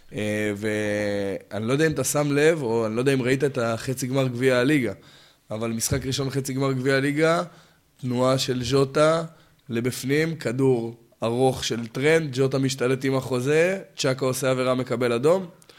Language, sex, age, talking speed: Hebrew, male, 20-39, 160 wpm